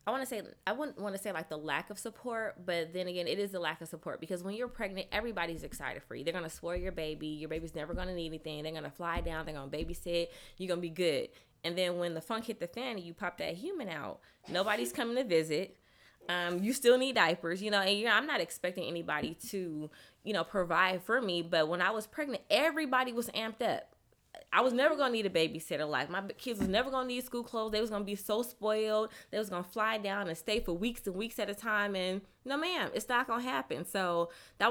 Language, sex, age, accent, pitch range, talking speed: English, female, 20-39, American, 170-220 Hz, 255 wpm